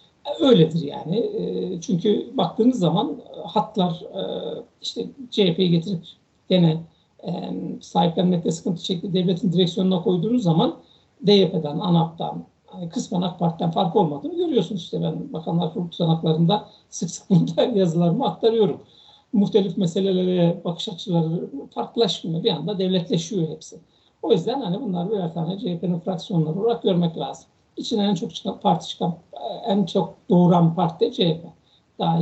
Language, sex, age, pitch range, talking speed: Turkish, male, 60-79, 165-205 Hz, 125 wpm